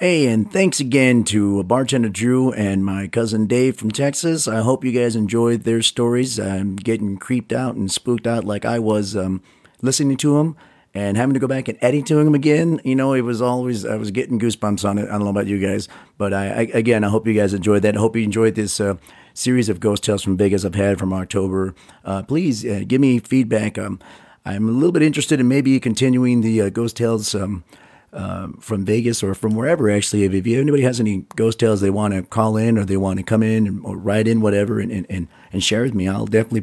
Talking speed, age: 240 wpm, 40-59